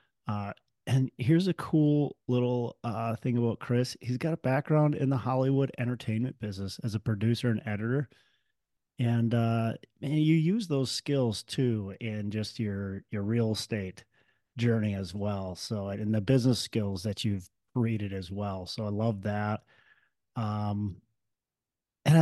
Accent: American